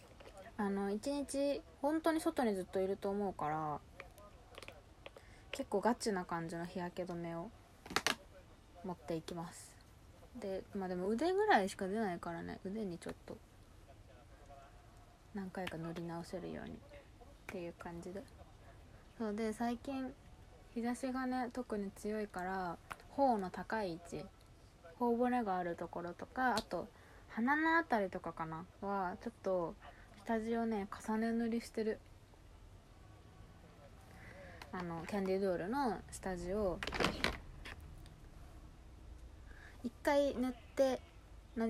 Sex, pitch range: female, 160-230 Hz